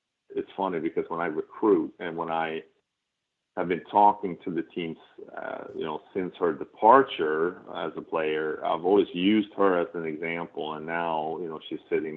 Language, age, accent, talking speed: English, 40-59, American, 180 wpm